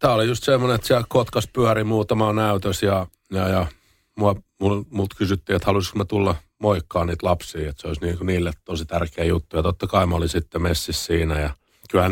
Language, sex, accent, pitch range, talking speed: Finnish, male, native, 85-105 Hz, 200 wpm